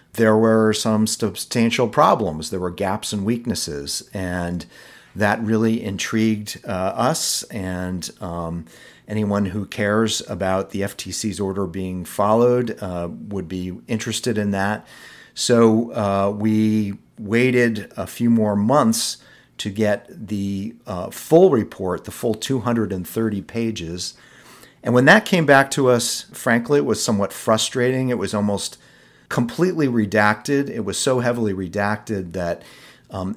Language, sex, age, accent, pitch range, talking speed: English, male, 40-59, American, 95-120 Hz, 135 wpm